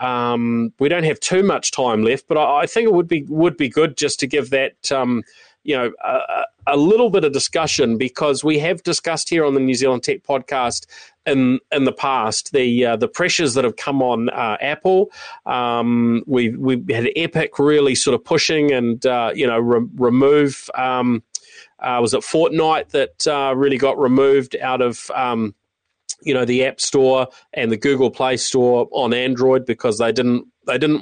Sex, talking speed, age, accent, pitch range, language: male, 195 wpm, 30-49, Australian, 120-155 Hz, English